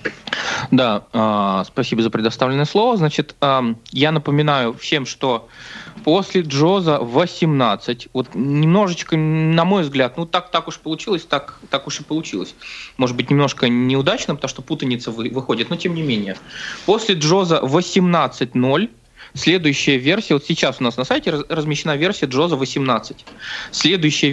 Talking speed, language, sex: 145 wpm, Russian, male